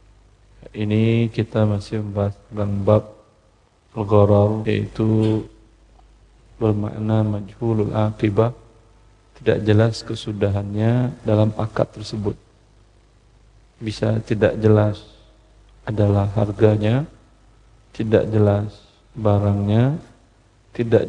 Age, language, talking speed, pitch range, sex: 40-59, Indonesian, 75 wpm, 105-115 Hz, male